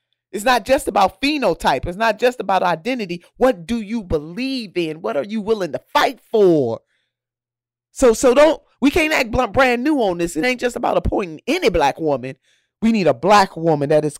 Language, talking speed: English, 205 wpm